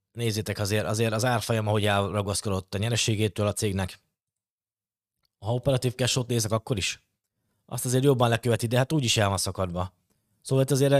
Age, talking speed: 20-39, 165 wpm